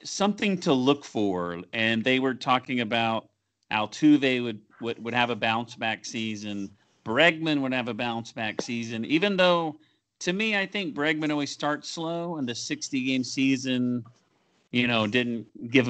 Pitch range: 115-155 Hz